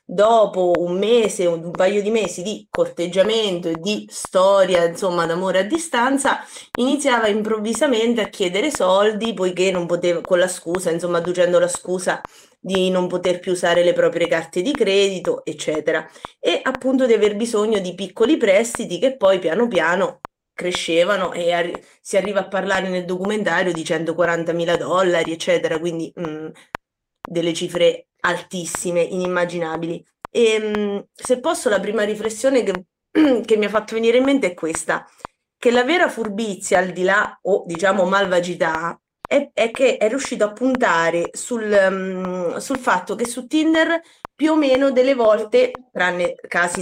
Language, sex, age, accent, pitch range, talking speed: Italian, female, 20-39, native, 180-245 Hz, 150 wpm